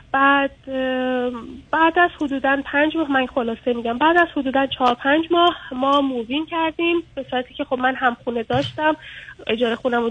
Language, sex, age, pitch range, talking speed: Persian, female, 20-39, 245-300 Hz, 160 wpm